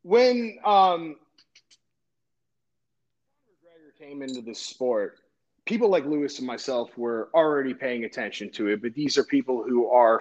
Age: 30-49